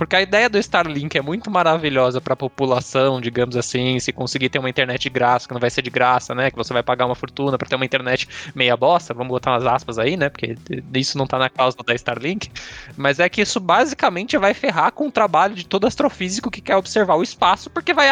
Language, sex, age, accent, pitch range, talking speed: Portuguese, male, 20-39, Brazilian, 135-195 Hz, 240 wpm